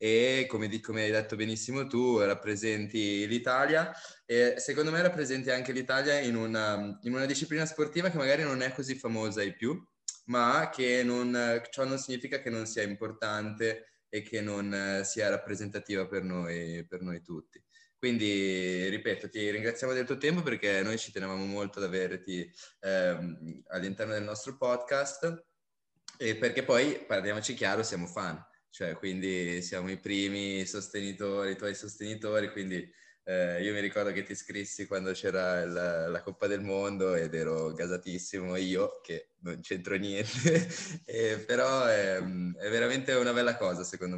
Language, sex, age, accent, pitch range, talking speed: Italian, male, 20-39, native, 100-125 Hz, 160 wpm